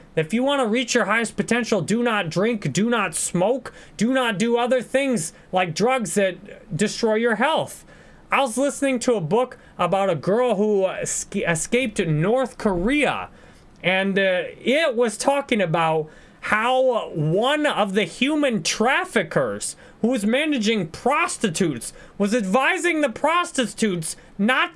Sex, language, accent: male, English, American